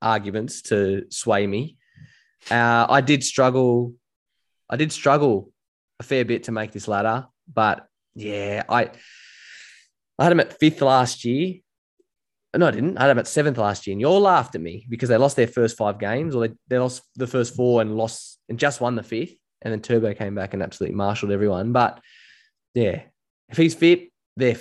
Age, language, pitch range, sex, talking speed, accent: 20-39, English, 110-140 Hz, male, 195 wpm, Australian